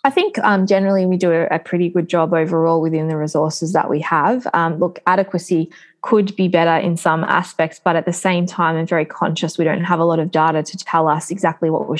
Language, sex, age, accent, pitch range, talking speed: English, female, 20-39, Australian, 160-185 Hz, 235 wpm